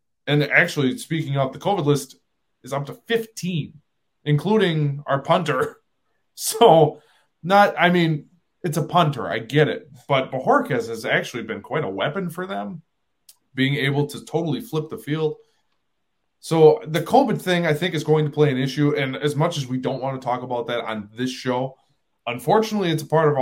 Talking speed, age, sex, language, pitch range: 185 wpm, 20-39, male, English, 130-160 Hz